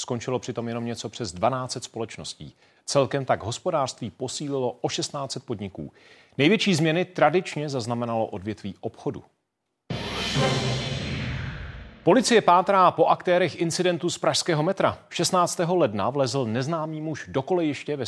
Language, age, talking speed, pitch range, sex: Czech, 40-59, 120 wpm, 120-155 Hz, male